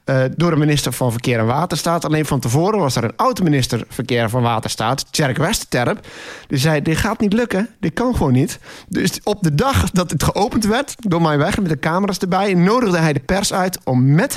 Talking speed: 215 wpm